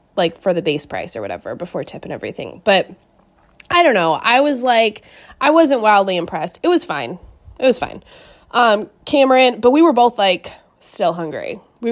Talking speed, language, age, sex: 190 wpm, English, 20-39, female